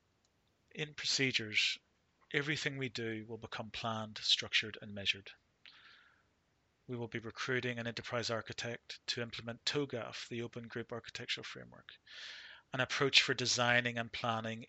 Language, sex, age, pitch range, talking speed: English, male, 30-49, 110-125 Hz, 130 wpm